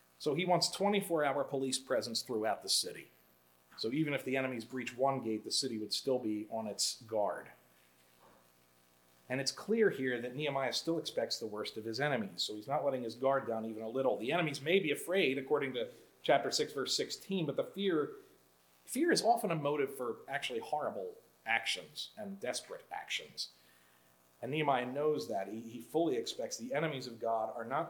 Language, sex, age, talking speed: English, male, 40-59, 190 wpm